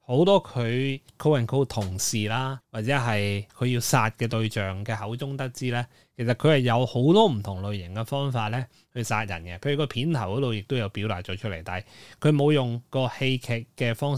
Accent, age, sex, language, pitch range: native, 20-39, male, Chinese, 110-145 Hz